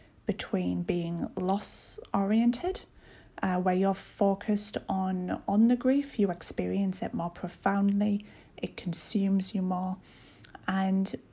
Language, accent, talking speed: English, British, 110 wpm